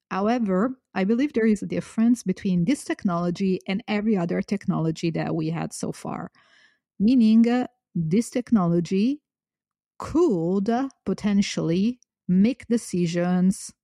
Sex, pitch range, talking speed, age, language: female, 175-220 Hz, 115 wpm, 30-49, English